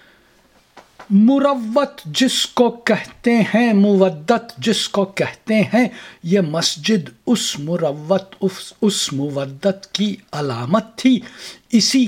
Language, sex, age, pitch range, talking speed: Urdu, male, 60-79, 170-220 Hz, 105 wpm